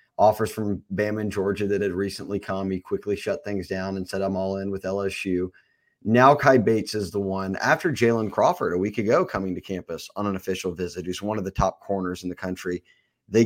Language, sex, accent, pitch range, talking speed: English, male, American, 95-120 Hz, 225 wpm